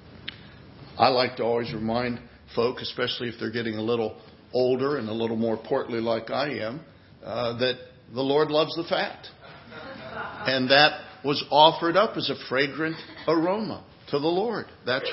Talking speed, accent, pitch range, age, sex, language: 165 wpm, American, 110-150 Hz, 60-79, male, English